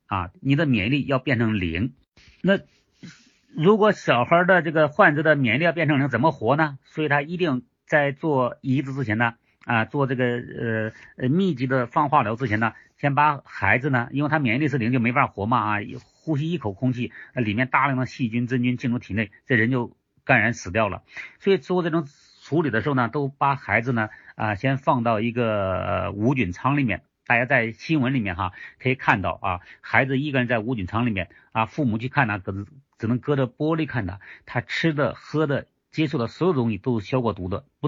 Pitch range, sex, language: 115-150 Hz, male, Chinese